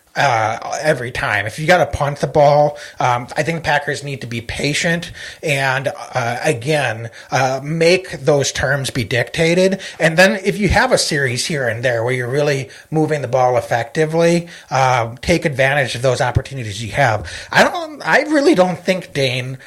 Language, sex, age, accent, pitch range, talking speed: English, male, 30-49, American, 130-165 Hz, 180 wpm